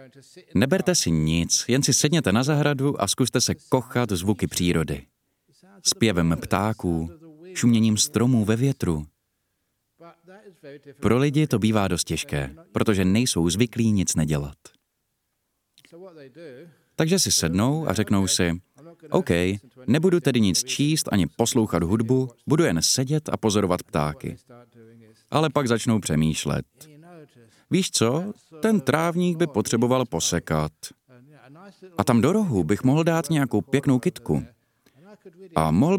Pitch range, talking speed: 100-155 Hz, 125 wpm